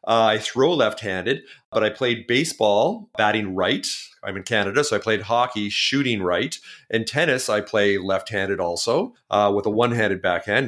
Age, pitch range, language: 40-59, 110-135 Hz, English